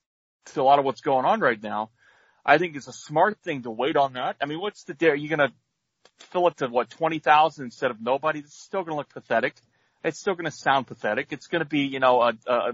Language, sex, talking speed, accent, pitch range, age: English, male, 265 wpm, American, 120-155 Hz, 40-59